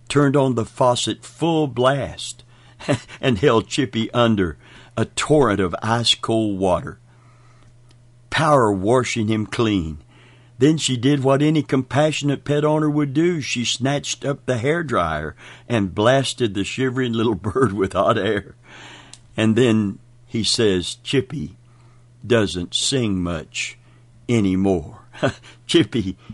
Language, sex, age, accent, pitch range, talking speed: English, male, 60-79, American, 105-125 Hz, 120 wpm